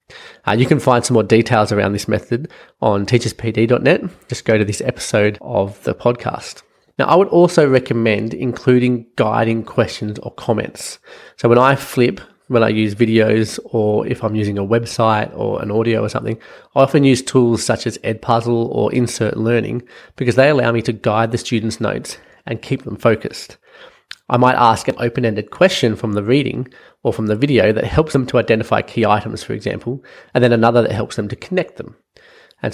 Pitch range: 110-125 Hz